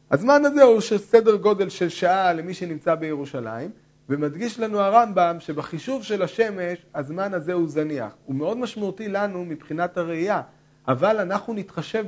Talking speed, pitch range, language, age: 150 wpm, 150-205 Hz, Hebrew, 40-59